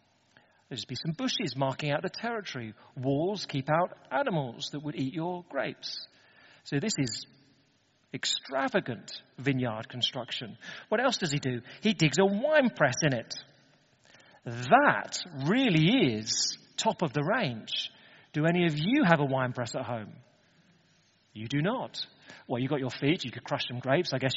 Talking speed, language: 165 wpm, English